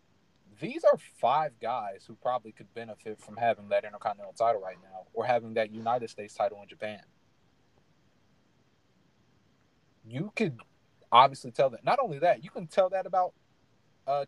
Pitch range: 120-170 Hz